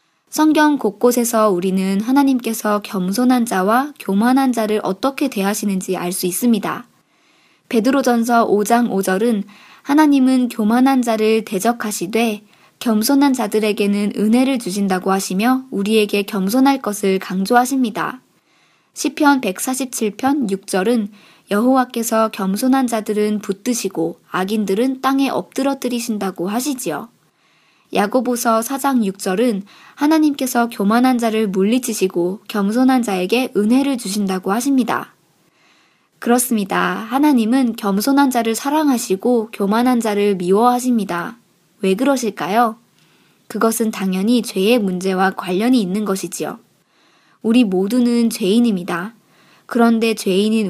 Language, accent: Korean, native